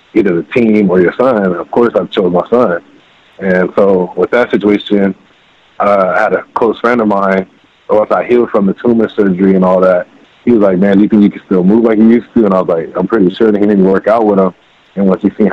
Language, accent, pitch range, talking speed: English, American, 95-105 Hz, 265 wpm